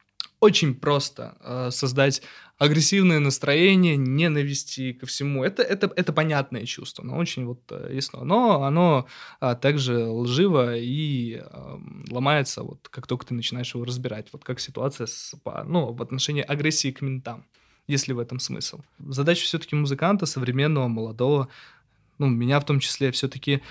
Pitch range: 125-150 Hz